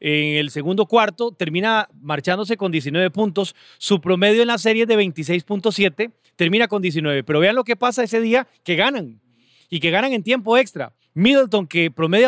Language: Spanish